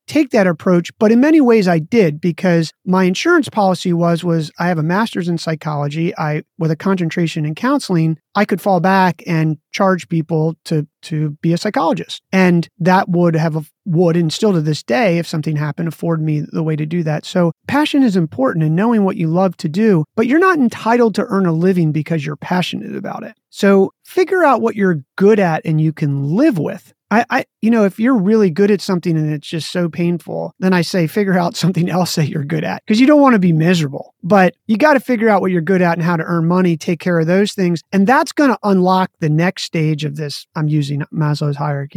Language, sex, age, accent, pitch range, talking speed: English, male, 30-49, American, 160-200 Hz, 230 wpm